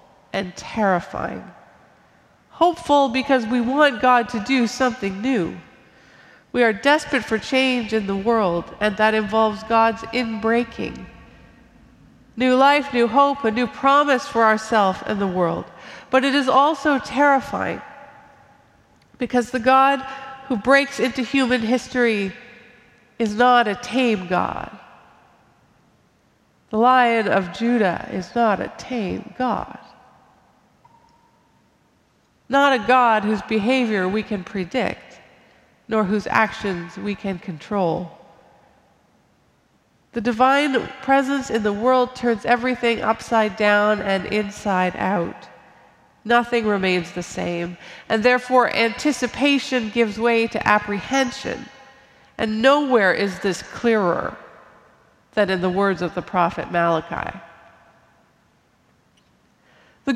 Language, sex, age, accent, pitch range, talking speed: English, female, 50-69, American, 205-260 Hz, 115 wpm